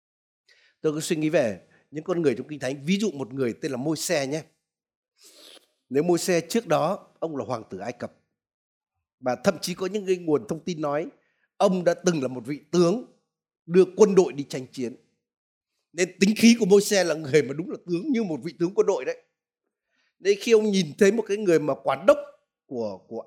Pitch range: 155-220 Hz